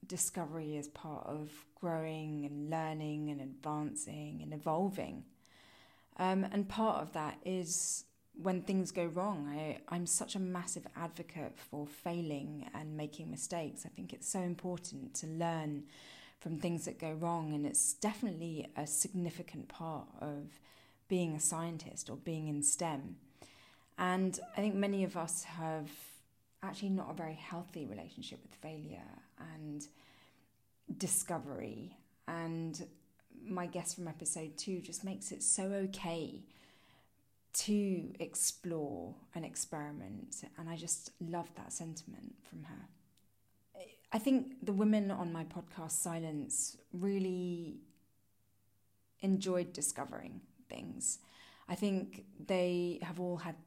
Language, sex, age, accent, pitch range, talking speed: English, female, 20-39, British, 150-180 Hz, 130 wpm